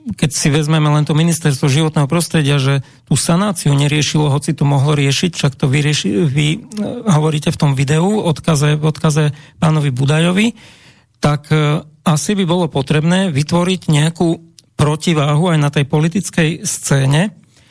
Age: 40-59